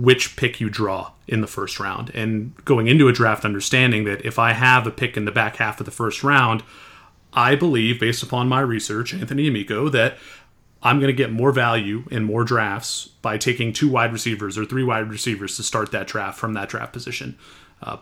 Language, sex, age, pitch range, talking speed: English, male, 30-49, 110-130 Hz, 215 wpm